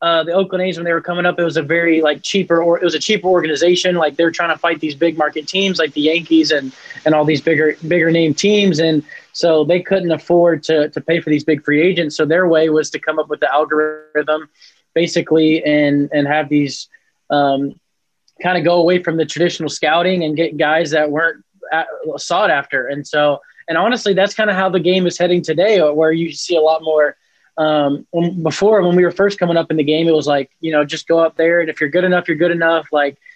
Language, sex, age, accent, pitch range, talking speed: English, male, 20-39, American, 155-175 Hz, 240 wpm